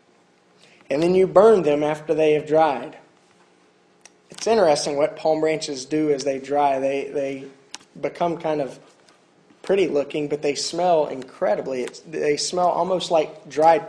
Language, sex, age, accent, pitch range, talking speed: English, male, 30-49, American, 155-215 Hz, 150 wpm